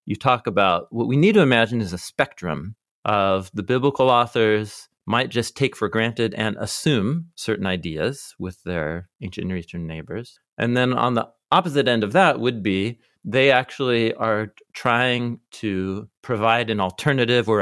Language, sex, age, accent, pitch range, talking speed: English, male, 40-59, American, 100-130 Hz, 165 wpm